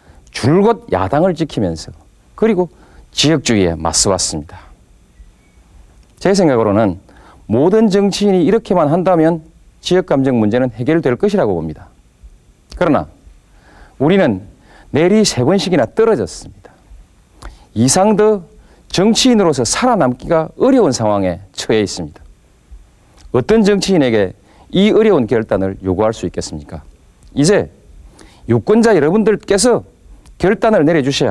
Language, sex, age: Korean, male, 40-59